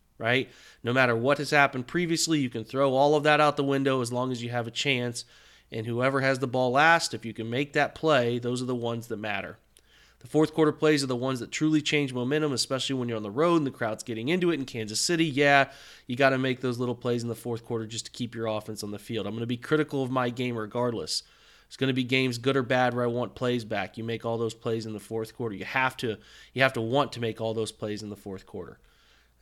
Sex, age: male, 30-49